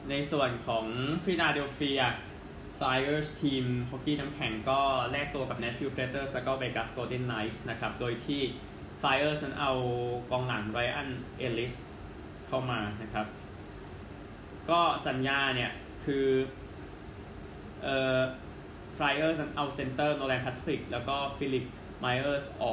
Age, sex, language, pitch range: 20-39, male, Thai, 105-135 Hz